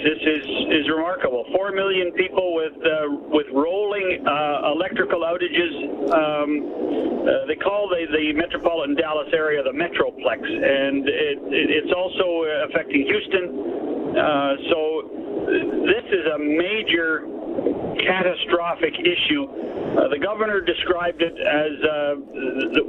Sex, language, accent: male, English, American